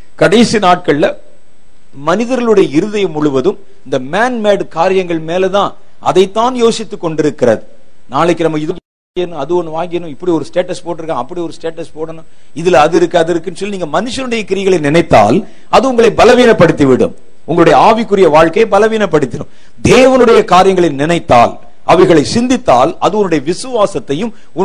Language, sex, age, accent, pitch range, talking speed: Tamil, male, 50-69, native, 170-235 Hz, 35 wpm